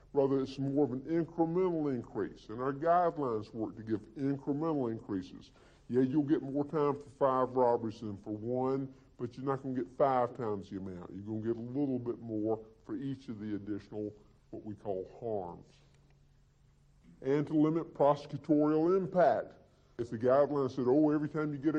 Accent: American